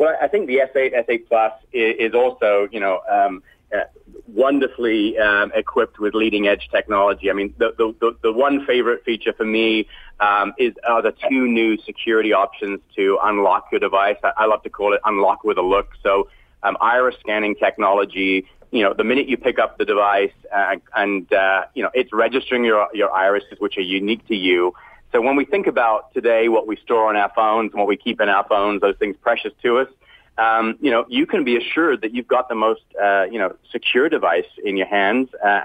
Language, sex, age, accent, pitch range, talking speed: English, male, 30-49, American, 100-135 Hz, 210 wpm